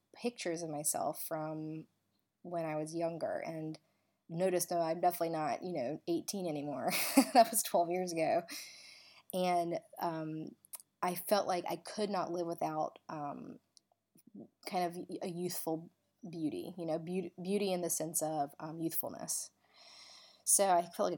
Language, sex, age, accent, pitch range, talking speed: English, female, 20-39, American, 155-180 Hz, 150 wpm